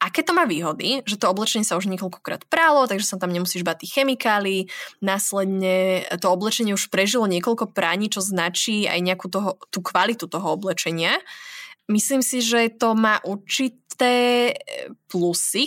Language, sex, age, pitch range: Slovak, female, 20-39, 185-235 Hz